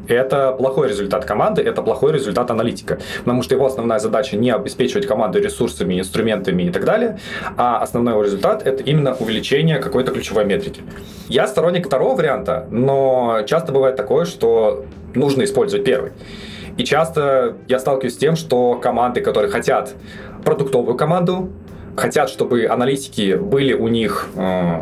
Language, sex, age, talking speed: Russian, male, 20-39, 150 wpm